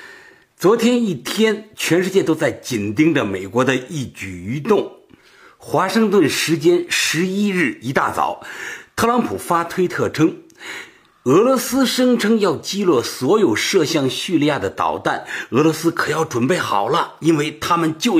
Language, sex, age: Chinese, male, 50-69